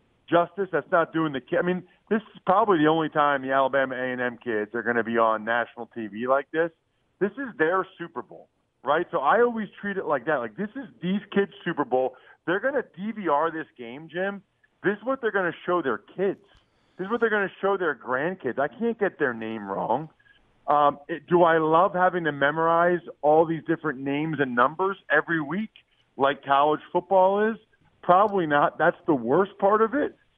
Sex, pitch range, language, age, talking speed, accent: male, 145-200 Hz, English, 40-59, 205 wpm, American